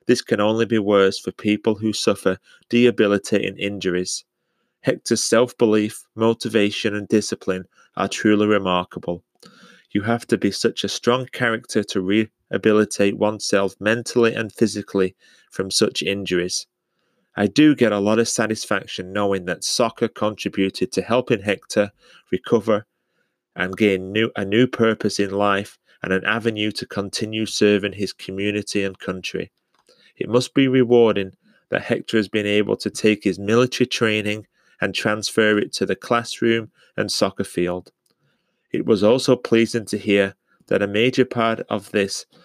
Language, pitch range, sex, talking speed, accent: English, 100-115 Hz, male, 145 wpm, British